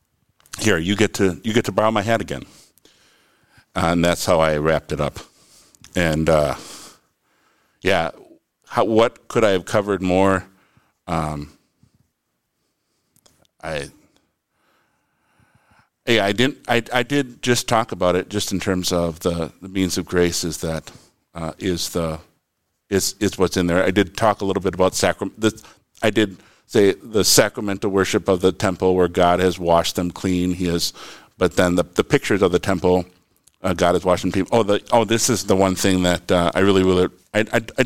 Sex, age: male, 50-69